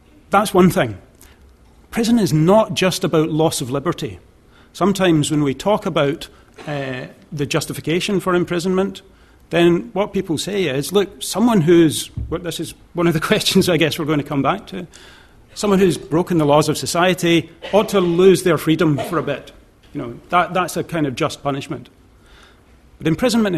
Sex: male